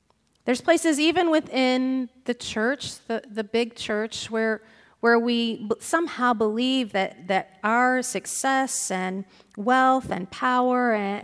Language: English